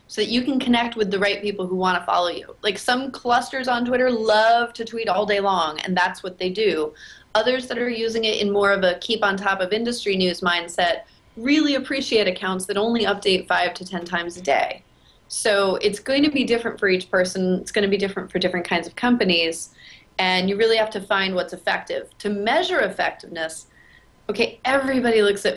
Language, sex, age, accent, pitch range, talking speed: English, female, 30-49, American, 180-225 Hz, 215 wpm